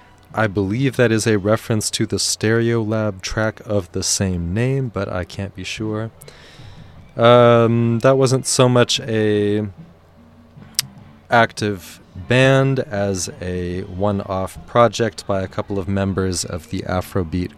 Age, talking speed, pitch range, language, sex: 20-39, 135 wpm, 95-115 Hz, English, male